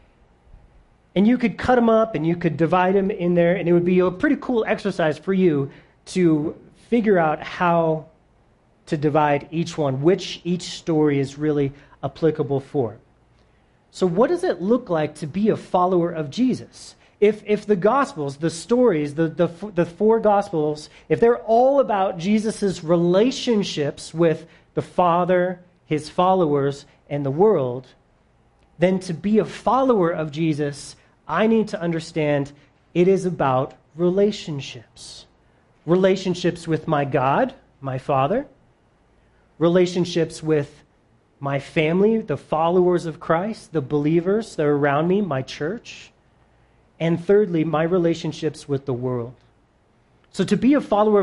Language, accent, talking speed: English, American, 145 wpm